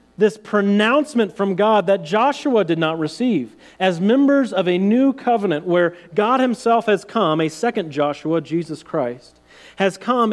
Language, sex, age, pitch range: English, male, 40-59, 170-240 Hz